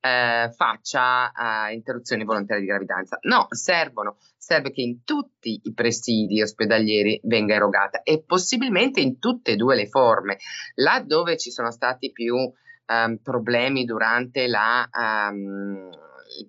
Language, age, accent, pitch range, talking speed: Italian, 30-49, native, 115-150 Hz, 120 wpm